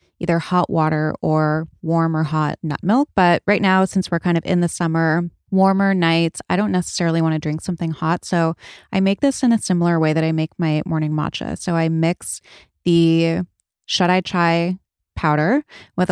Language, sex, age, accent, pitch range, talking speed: English, female, 20-39, American, 160-190 Hz, 195 wpm